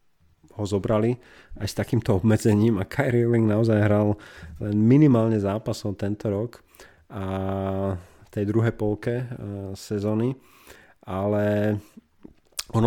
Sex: male